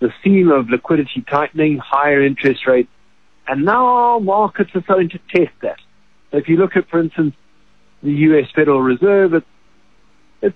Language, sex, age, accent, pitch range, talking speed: English, male, 50-69, British, 130-175 Hz, 170 wpm